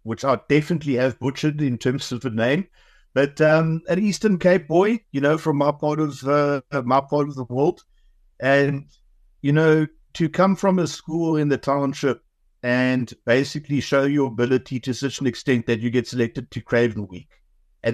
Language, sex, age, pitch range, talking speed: English, male, 60-79, 115-145 Hz, 185 wpm